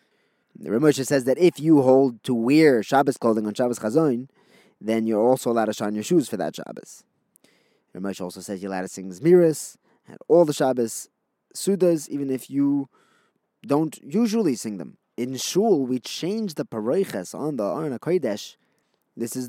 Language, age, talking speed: English, 20-39, 175 wpm